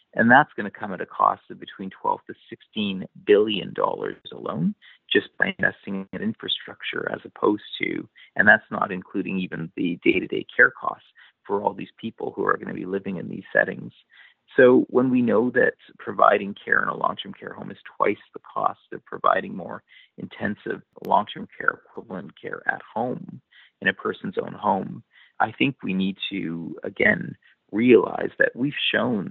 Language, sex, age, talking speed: English, male, 40-59, 175 wpm